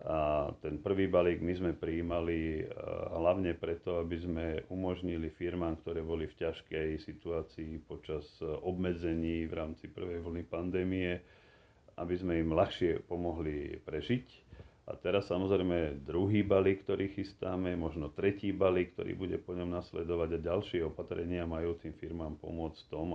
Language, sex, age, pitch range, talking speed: Slovak, male, 40-59, 80-90 Hz, 140 wpm